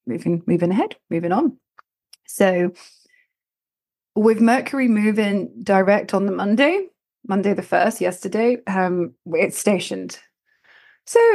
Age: 30-49